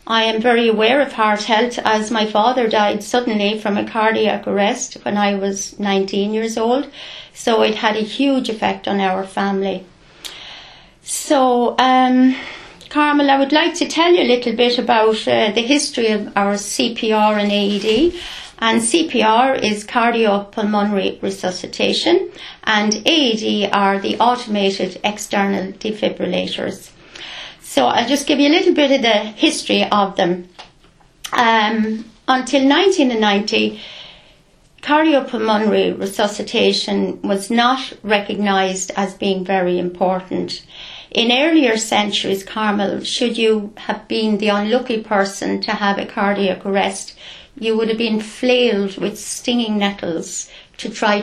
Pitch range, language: 205-250 Hz, English